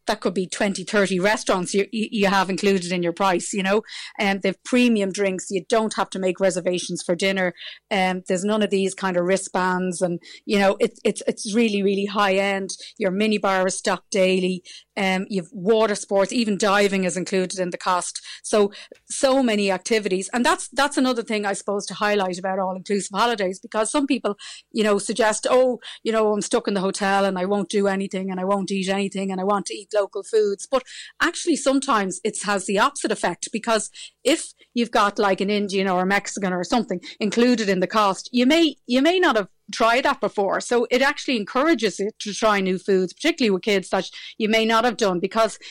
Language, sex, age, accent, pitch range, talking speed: English, female, 30-49, Irish, 190-230 Hz, 215 wpm